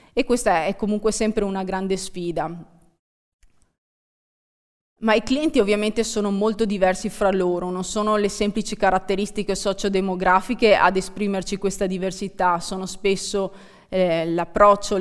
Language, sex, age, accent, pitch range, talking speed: Italian, female, 20-39, native, 190-220 Hz, 125 wpm